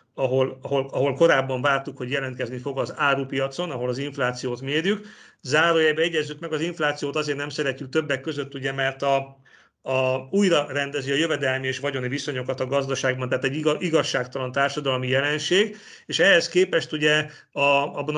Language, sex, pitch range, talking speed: Hungarian, male, 135-165 Hz, 160 wpm